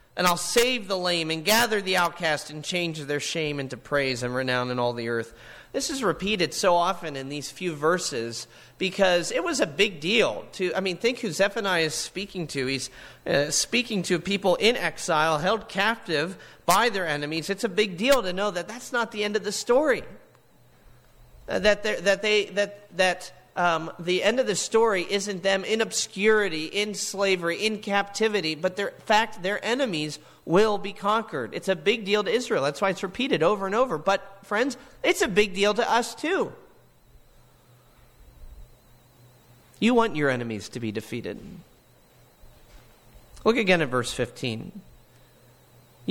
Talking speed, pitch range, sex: 175 wpm, 145-210 Hz, male